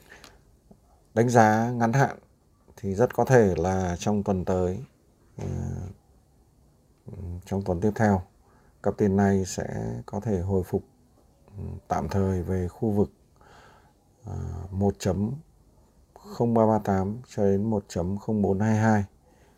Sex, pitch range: male, 95-115 Hz